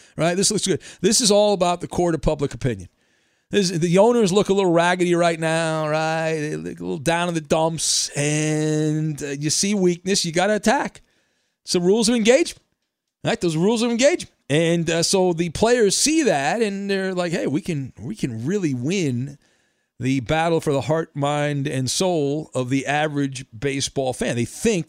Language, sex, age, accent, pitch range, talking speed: English, male, 40-59, American, 135-190 Hz, 200 wpm